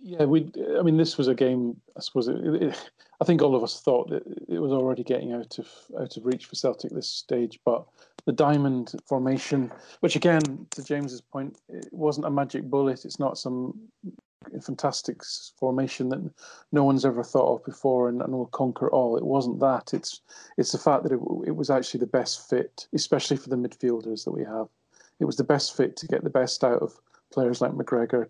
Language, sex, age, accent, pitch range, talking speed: English, male, 40-59, British, 125-140 Hz, 210 wpm